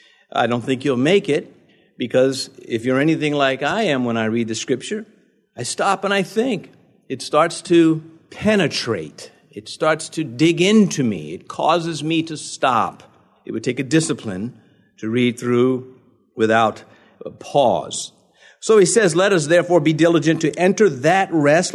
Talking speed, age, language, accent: 170 wpm, 50-69, English, American